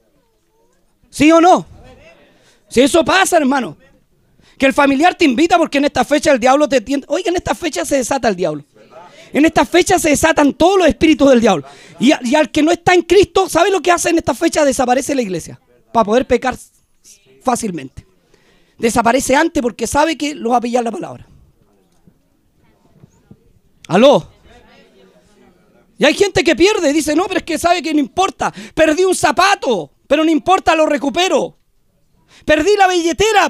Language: Spanish